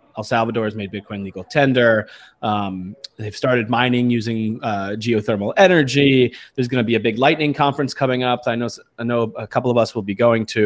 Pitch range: 110-135 Hz